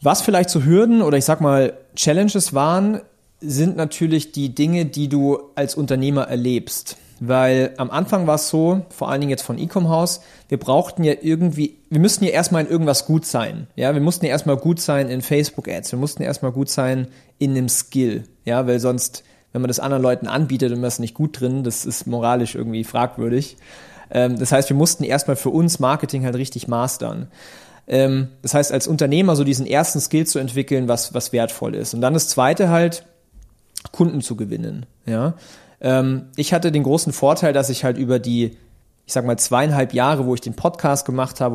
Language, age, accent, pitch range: German, 30-49, German, 125-155 Hz